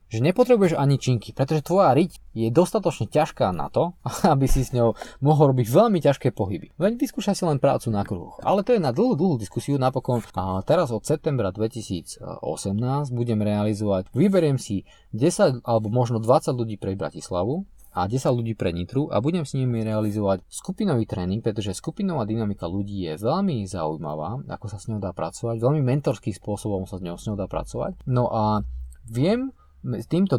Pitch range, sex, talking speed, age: 105-150 Hz, male, 180 wpm, 20-39